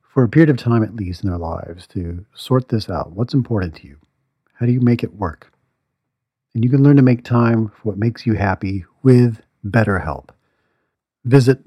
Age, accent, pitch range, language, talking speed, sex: 50-69, American, 105-140 Hz, English, 200 wpm, male